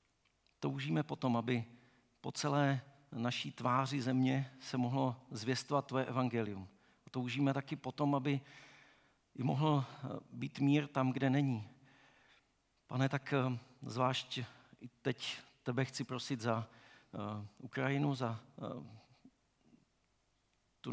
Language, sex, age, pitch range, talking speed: Czech, male, 50-69, 120-135 Hz, 100 wpm